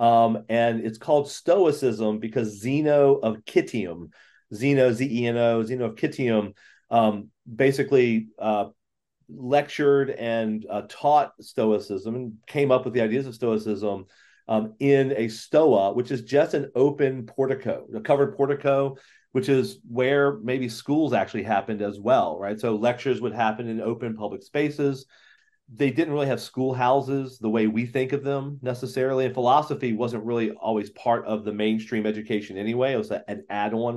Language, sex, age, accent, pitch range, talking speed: English, male, 40-59, American, 110-135 Hz, 155 wpm